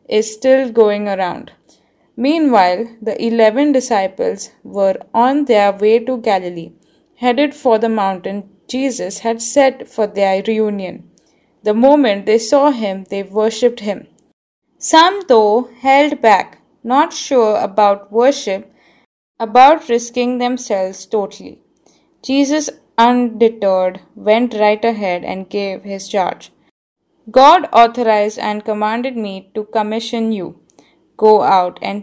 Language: English